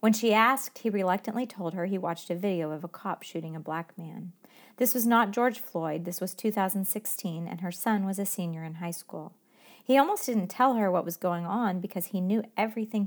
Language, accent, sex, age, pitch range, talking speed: English, American, female, 40-59, 175-220 Hz, 220 wpm